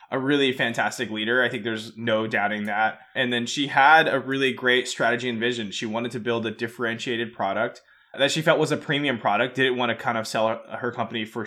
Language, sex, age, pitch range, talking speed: English, male, 20-39, 110-130 Hz, 225 wpm